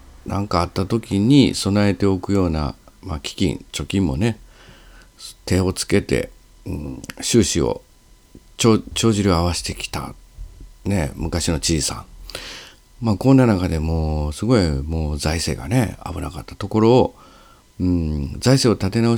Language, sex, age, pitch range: Japanese, male, 50-69, 75-110 Hz